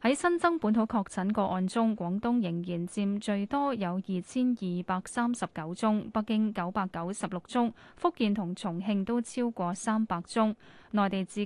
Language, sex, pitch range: Chinese, female, 185-240 Hz